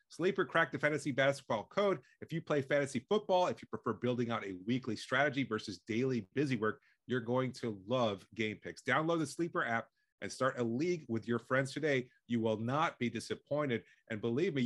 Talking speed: 200 wpm